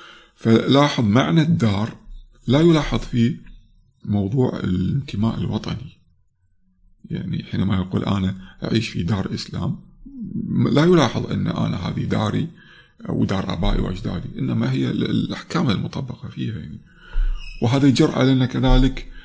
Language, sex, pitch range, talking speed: Arabic, male, 100-140 Hz, 110 wpm